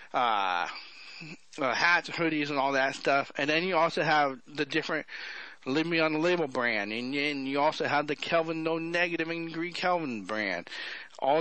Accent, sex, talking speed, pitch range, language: American, male, 175 wpm, 150-200 Hz, English